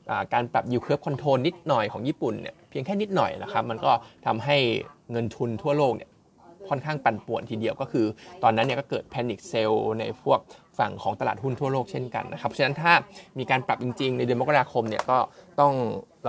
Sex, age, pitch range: male, 20-39, 120-145 Hz